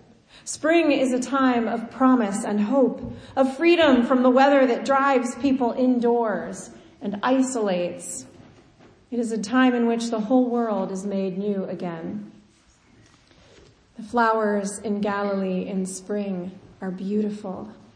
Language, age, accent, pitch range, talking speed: English, 40-59, American, 210-255 Hz, 135 wpm